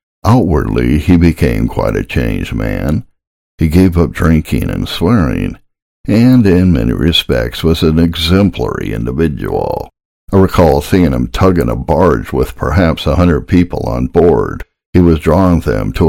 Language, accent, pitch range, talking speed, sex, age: English, American, 65-90 Hz, 150 wpm, male, 60-79